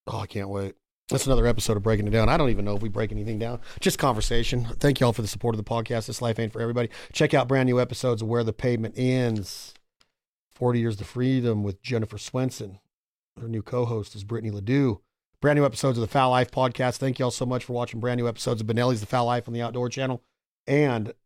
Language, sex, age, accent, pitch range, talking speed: English, male, 40-59, American, 115-135 Hz, 245 wpm